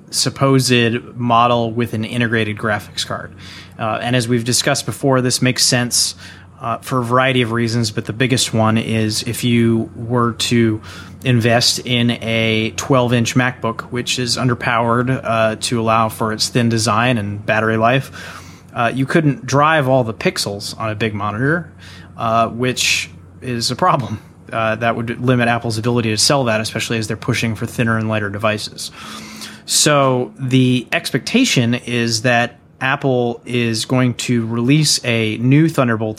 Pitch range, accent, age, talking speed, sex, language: 110-130 Hz, American, 20-39, 160 wpm, male, English